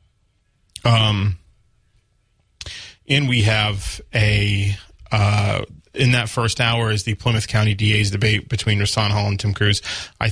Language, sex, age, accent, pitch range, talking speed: English, male, 20-39, American, 100-115 Hz, 135 wpm